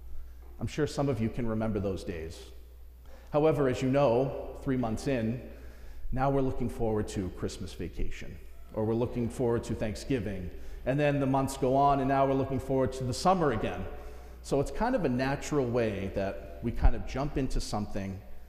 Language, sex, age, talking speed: English, male, 40-59, 190 wpm